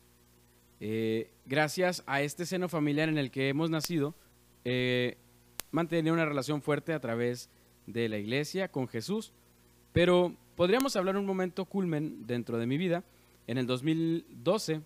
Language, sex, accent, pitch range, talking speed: Spanish, male, Mexican, 115-165 Hz, 145 wpm